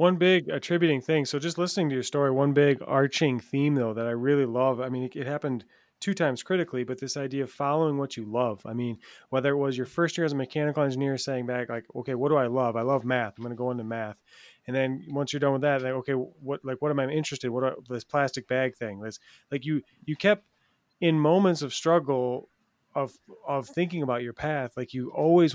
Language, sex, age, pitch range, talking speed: English, male, 30-49, 125-155 Hz, 245 wpm